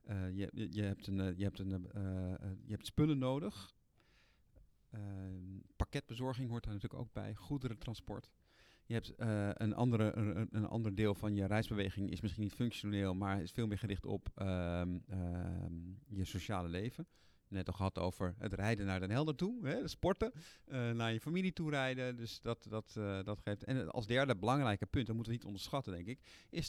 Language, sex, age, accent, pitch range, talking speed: Dutch, male, 50-69, Dutch, 100-130 Hz, 165 wpm